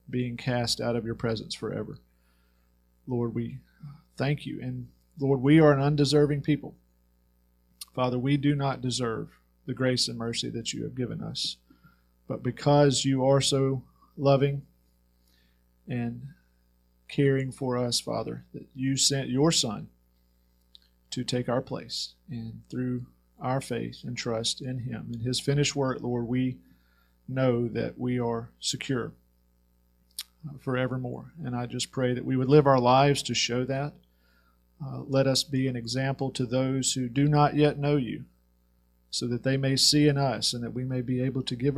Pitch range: 85-135 Hz